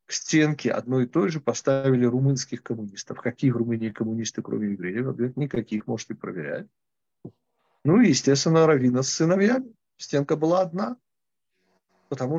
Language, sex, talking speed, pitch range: Russian, male, 135 wpm, 125-155 Hz